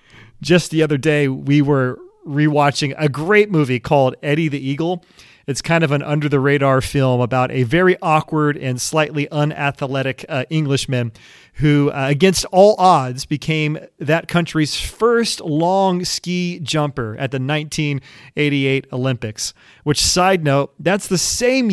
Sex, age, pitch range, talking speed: male, 30-49, 145-185 Hz, 145 wpm